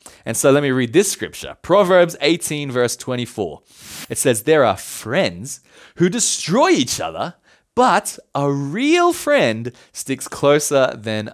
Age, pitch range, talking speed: 20-39, 120-170 Hz, 145 wpm